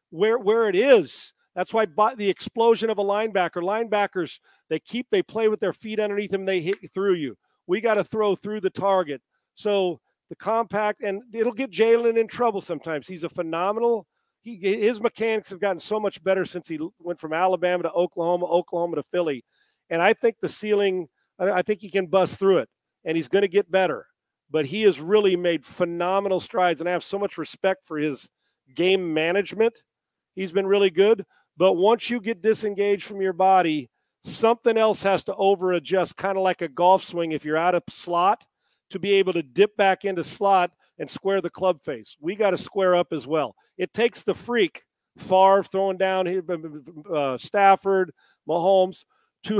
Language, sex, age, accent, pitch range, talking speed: English, male, 40-59, American, 175-215 Hz, 190 wpm